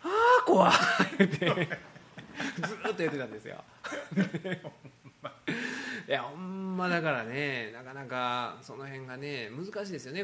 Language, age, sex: Japanese, 20-39, male